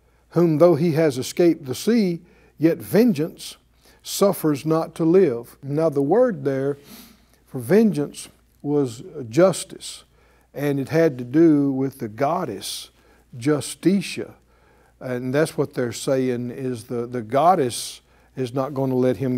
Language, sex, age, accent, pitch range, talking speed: English, male, 60-79, American, 130-185 Hz, 140 wpm